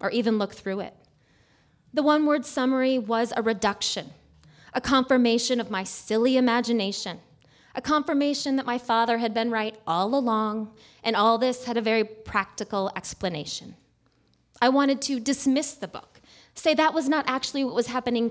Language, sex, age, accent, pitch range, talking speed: English, female, 20-39, American, 210-275 Hz, 165 wpm